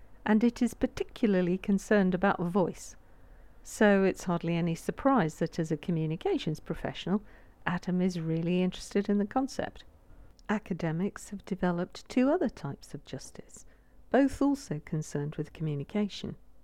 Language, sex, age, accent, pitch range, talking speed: English, female, 50-69, British, 165-220 Hz, 135 wpm